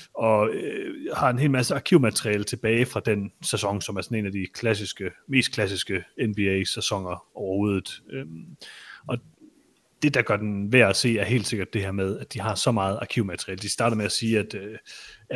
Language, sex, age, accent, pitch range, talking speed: Danish, male, 30-49, native, 100-120 Hz, 195 wpm